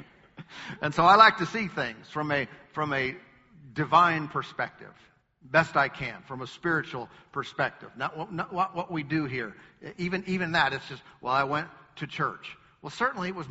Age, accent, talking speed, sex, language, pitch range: 50-69, American, 180 wpm, male, English, 130-175 Hz